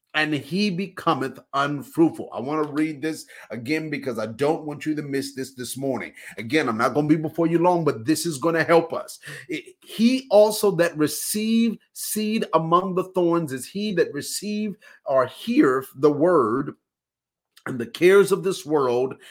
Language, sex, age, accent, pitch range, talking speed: English, male, 30-49, American, 145-195 Hz, 180 wpm